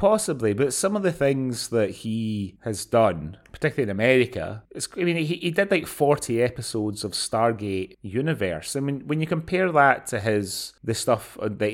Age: 30-49